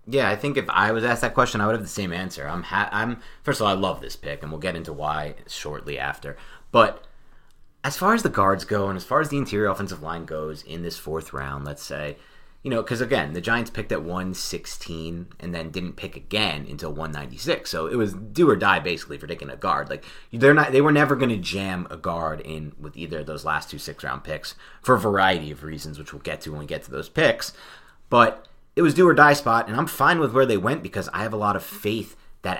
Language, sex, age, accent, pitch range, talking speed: English, male, 30-49, American, 80-115 Hz, 260 wpm